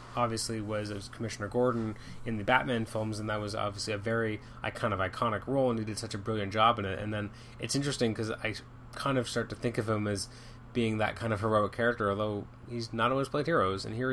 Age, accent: 20-39, American